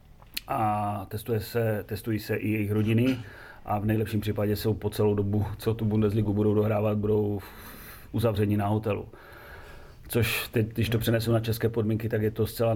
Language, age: Czech, 30-49